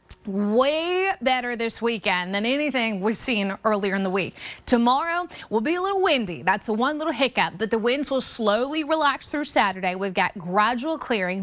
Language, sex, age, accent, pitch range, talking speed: English, female, 20-39, American, 205-265 Hz, 180 wpm